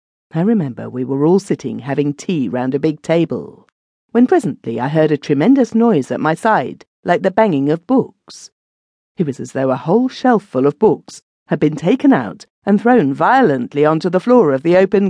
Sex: female